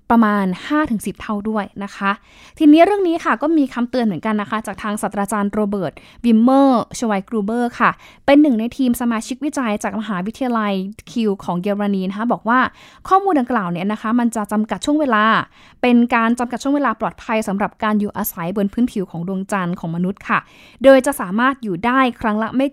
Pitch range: 205-255 Hz